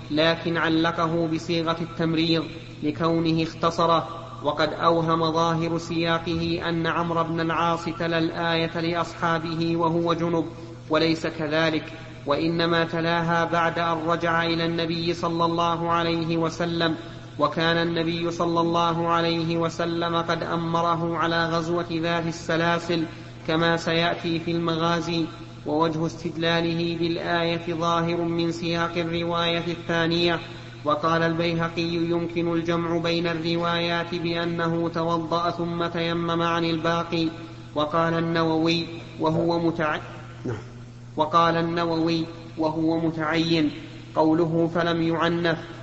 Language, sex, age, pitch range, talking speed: Arabic, male, 30-49, 165-170 Hz, 100 wpm